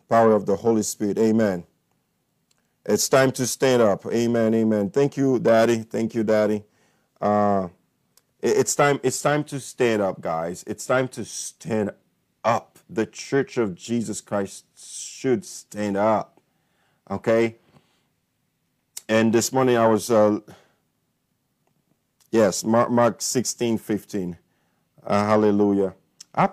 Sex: male